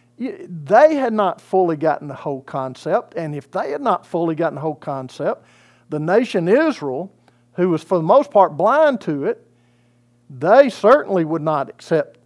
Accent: American